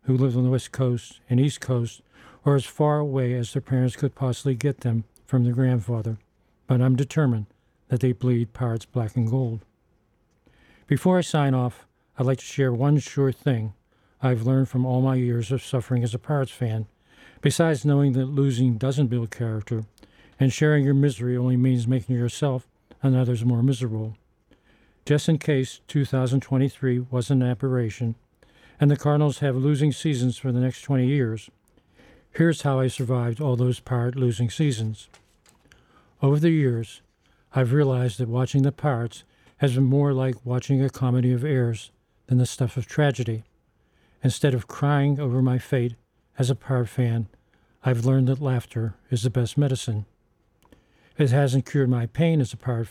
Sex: male